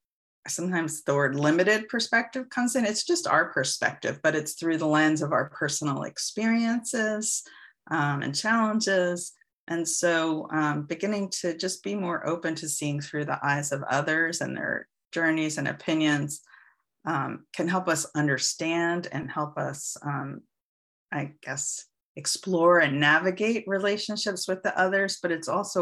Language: English